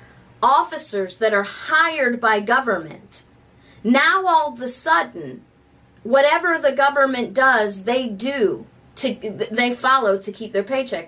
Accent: American